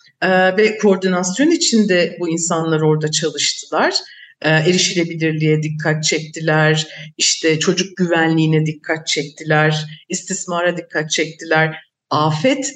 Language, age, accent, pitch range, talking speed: Turkish, 50-69, native, 150-200 Hz, 90 wpm